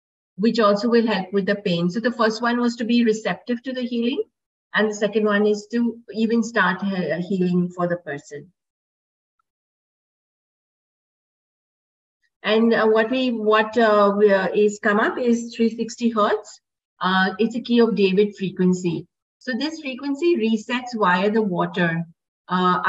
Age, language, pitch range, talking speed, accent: 50-69, English, 185-230 Hz, 155 wpm, Indian